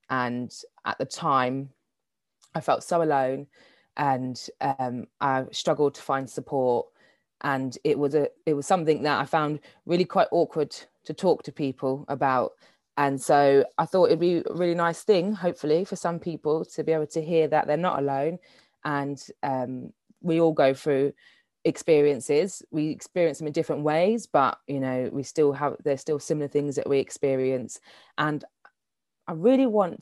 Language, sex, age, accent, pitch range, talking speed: English, female, 20-39, British, 135-165 Hz, 170 wpm